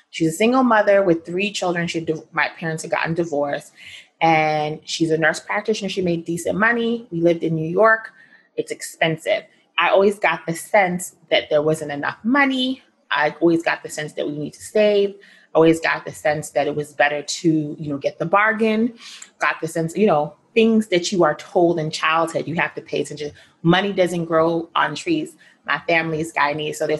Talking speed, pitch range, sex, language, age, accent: 205 wpm, 155-200 Hz, female, English, 30-49, American